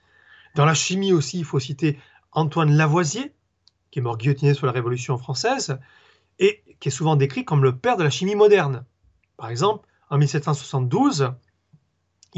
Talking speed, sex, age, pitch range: 160 wpm, male, 30-49, 140-195 Hz